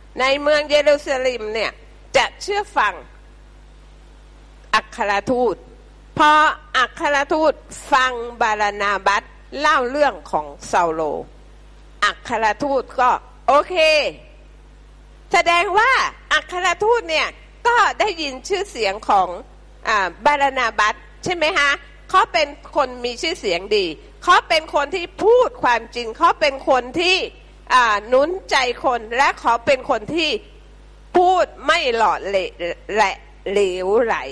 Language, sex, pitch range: Thai, female, 230-345 Hz